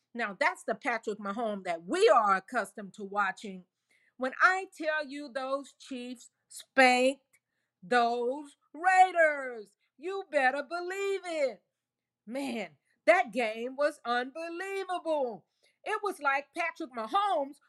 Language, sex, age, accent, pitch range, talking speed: English, female, 40-59, American, 225-330 Hz, 115 wpm